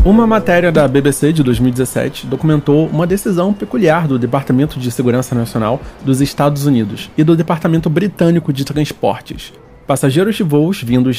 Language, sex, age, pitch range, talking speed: Portuguese, male, 20-39, 130-170 Hz, 150 wpm